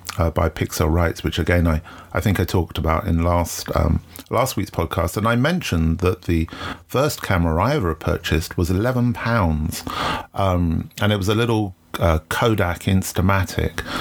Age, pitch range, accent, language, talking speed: 40-59, 85-105 Hz, British, English, 170 wpm